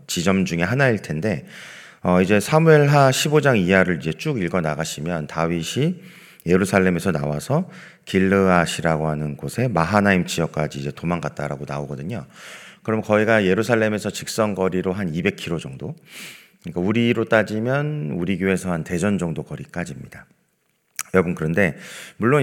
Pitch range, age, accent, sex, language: 90-130 Hz, 40-59, native, male, Korean